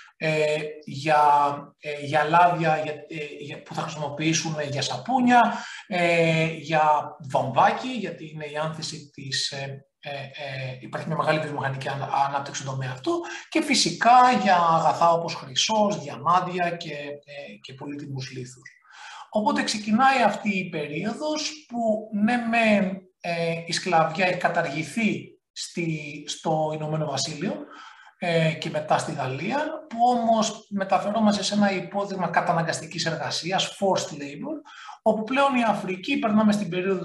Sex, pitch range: male, 150-210 Hz